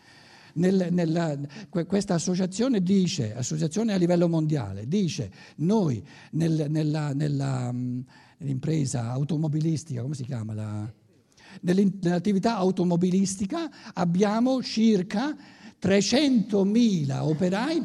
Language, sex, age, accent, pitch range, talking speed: Italian, male, 60-79, native, 140-205 Hz, 85 wpm